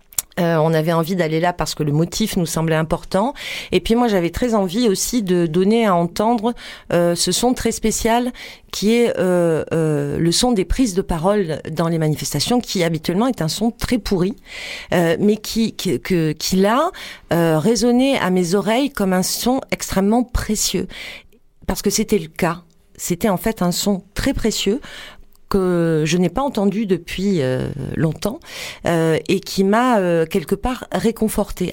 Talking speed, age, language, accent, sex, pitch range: 180 wpm, 40-59, French, French, female, 165-220 Hz